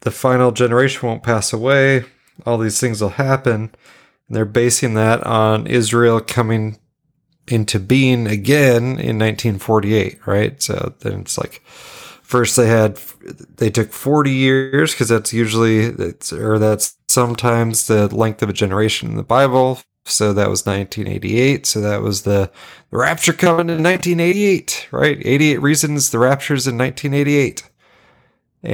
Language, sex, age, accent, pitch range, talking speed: English, male, 30-49, American, 110-140 Hz, 145 wpm